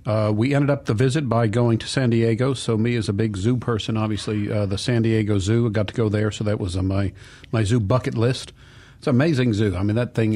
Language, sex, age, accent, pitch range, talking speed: English, male, 50-69, American, 105-125 Hz, 270 wpm